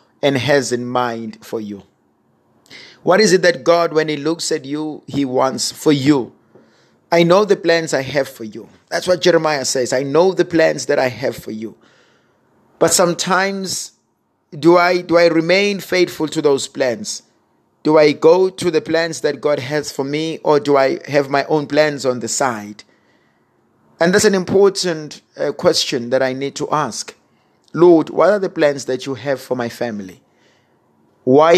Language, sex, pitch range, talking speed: English, male, 140-170 Hz, 180 wpm